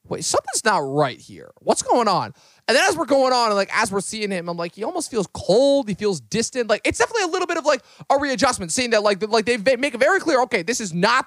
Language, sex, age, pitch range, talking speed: English, male, 20-39, 180-245 Hz, 275 wpm